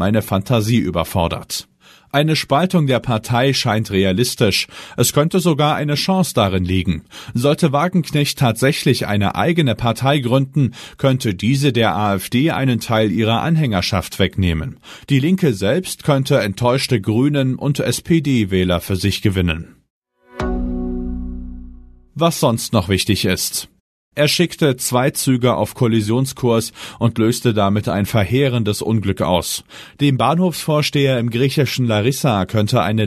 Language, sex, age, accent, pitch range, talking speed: German, male, 40-59, German, 100-135 Hz, 125 wpm